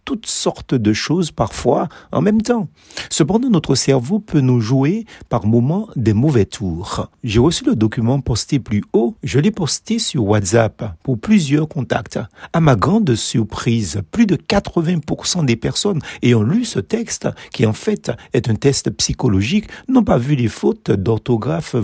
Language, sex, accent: French, male, French